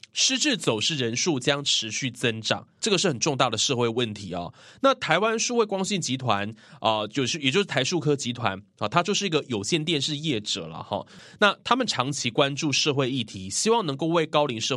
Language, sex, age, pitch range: Chinese, male, 20-39, 120-185 Hz